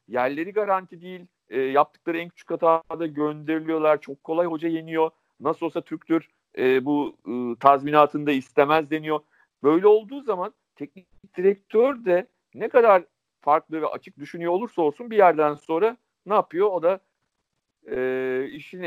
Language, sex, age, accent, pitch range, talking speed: Turkish, male, 50-69, native, 130-175 Hz, 145 wpm